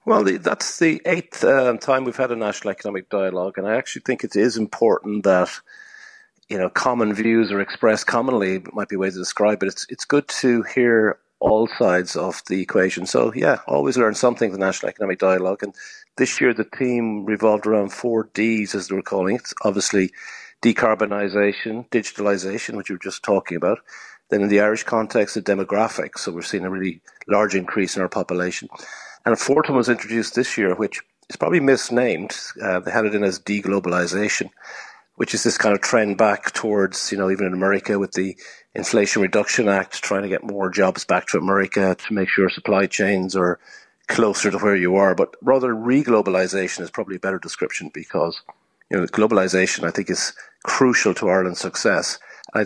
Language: English